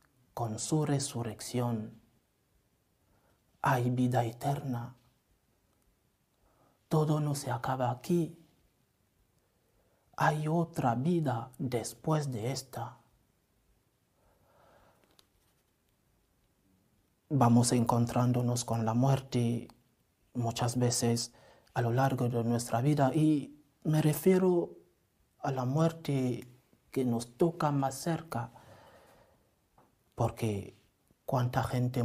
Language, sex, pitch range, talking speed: English, male, 120-140 Hz, 80 wpm